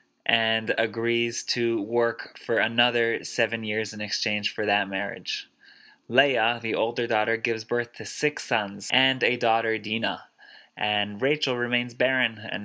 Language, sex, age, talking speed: English, male, 20-39, 145 wpm